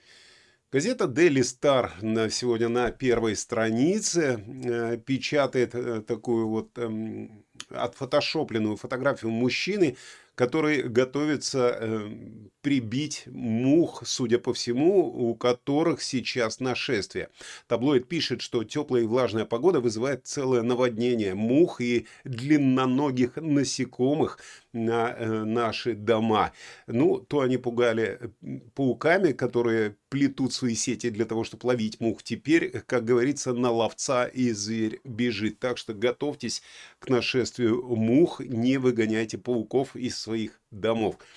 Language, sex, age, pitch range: Russian, male, 30-49, 115-130 Hz